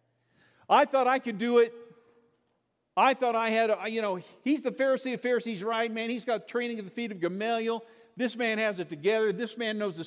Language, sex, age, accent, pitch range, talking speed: English, male, 50-69, American, 195-235 Hz, 215 wpm